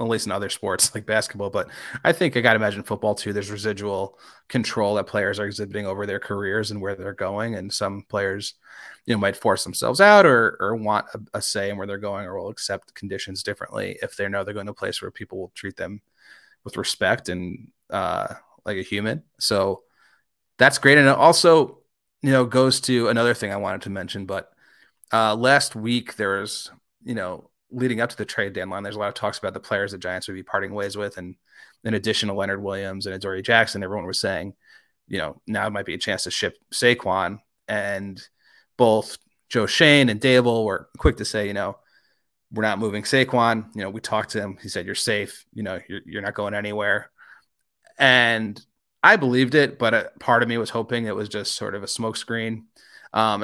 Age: 30-49